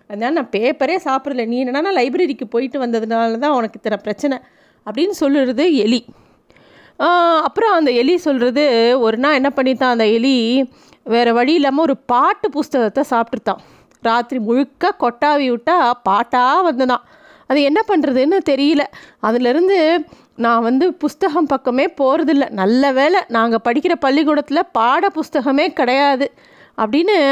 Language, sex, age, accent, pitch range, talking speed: Tamil, female, 30-49, native, 240-310 Hz, 125 wpm